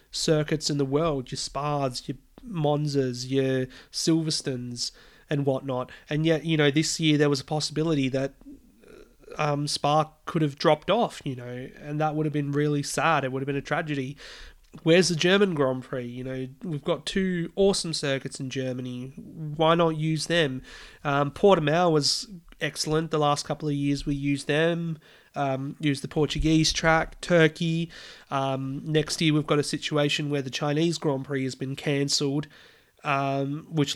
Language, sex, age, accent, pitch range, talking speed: English, male, 30-49, Australian, 140-165 Hz, 170 wpm